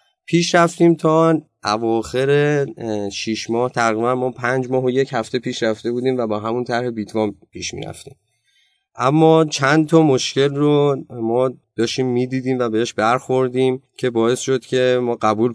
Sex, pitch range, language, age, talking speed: male, 110-140 Hz, Persian, 30-49, 160 wpm